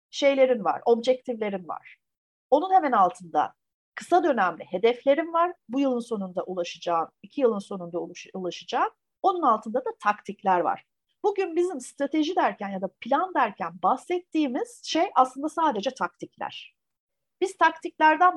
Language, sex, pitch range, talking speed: Turkish, female, 200-335 Hz, 125 wpm